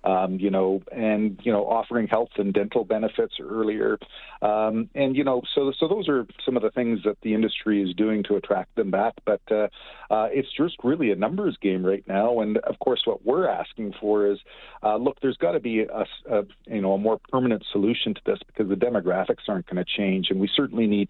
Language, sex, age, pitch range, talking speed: English, male, 40-59, 95-110 Hz, 225 wpm